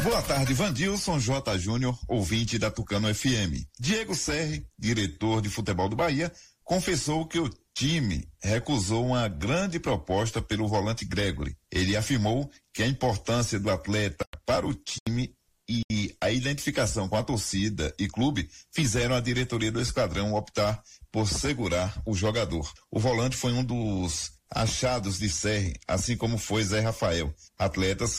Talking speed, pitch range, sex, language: 145 wpm, 95-125 Hz, male, Portuguese